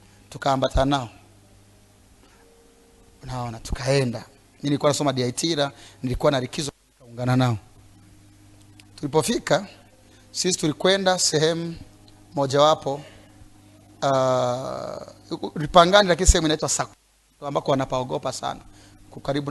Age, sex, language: 30-49, male, English